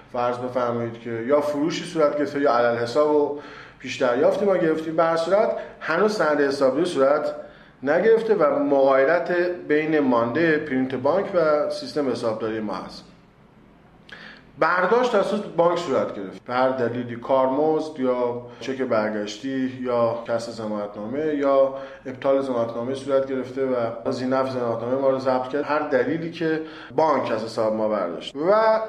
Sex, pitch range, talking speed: male, 125-175 Hz, 145 wpm